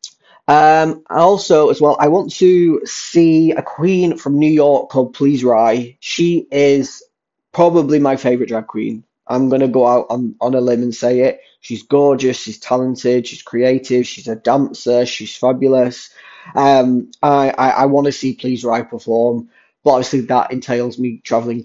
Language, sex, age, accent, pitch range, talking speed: English, male, 20-39, British, 120-150 Hz, 170 wpm